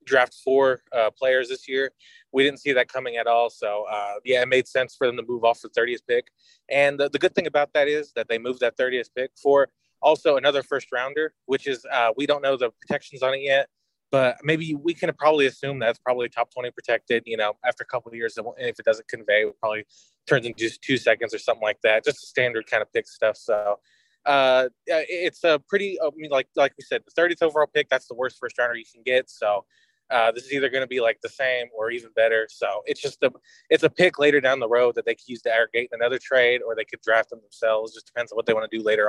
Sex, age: male, 20-39